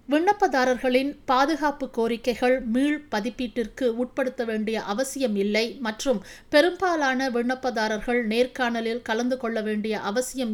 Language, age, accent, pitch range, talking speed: Tamil, 50-69, native, 220-260 Hz, 90 wpm